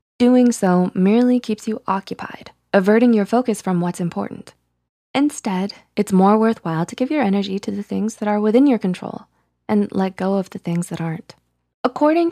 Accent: American